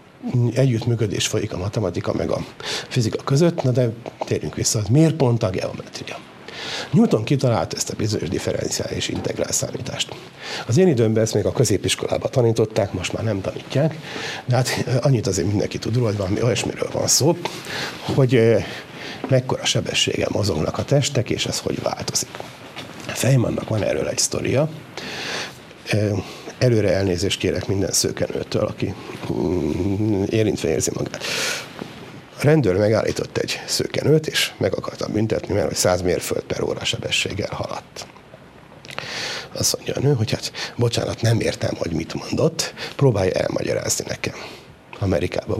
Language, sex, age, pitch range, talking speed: Hungarian, male, 60-79, 110-135 Hz, 135 wpm